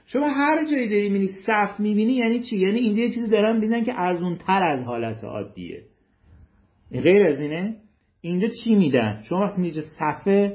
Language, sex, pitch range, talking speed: Persian, male, 120-195 Hz, 180 wpm